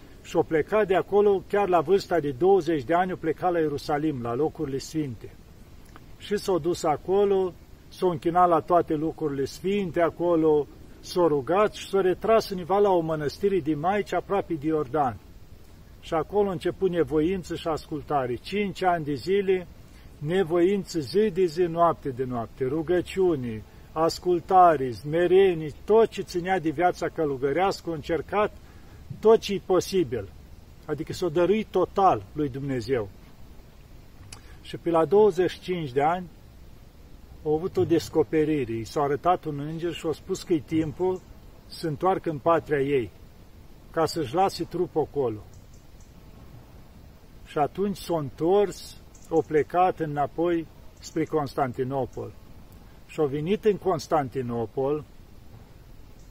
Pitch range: 145-185 Hz